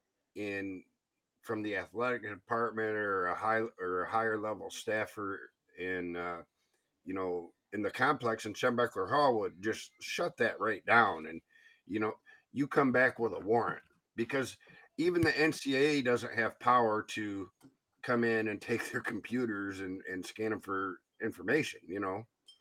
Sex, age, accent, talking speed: male, 50-69, American, 160 wpm